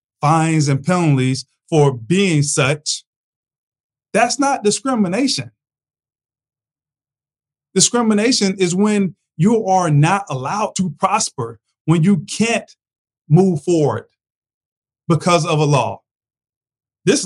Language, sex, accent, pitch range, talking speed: English, male, American, 140-185 Hz, 95 wpm